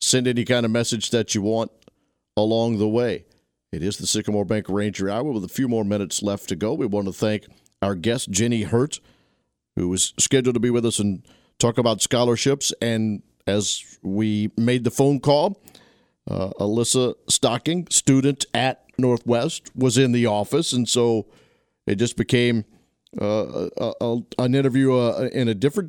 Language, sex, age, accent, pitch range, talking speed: English, male, 50-69, American, 105-125 Hz, 175 wpm